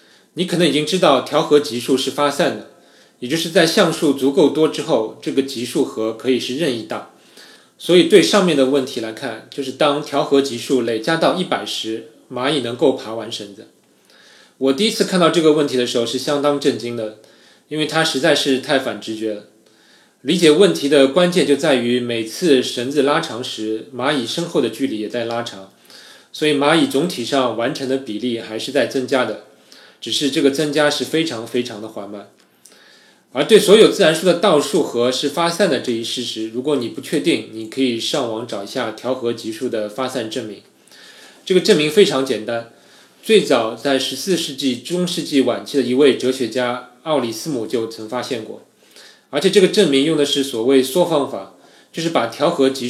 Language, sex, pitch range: Chinese, male, 115-150 Hz